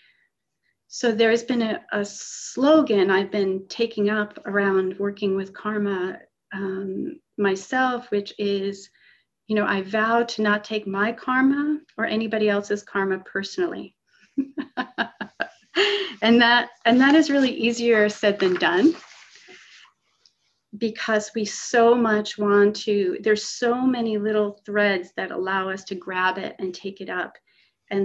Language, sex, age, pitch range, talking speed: English, female, 40-59, 195-235 Hz, 135 wpm